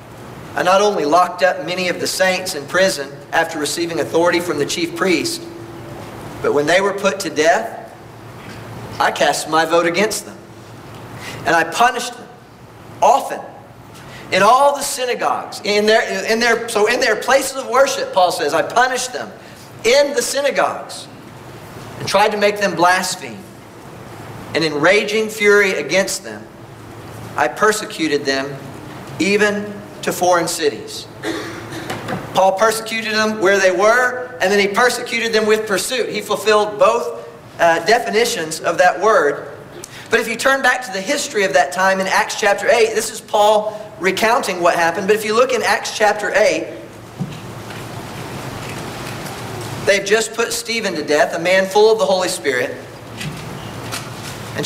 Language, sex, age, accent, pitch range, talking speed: English, male, 50-69, American, 145-215 Hz, 155 wpm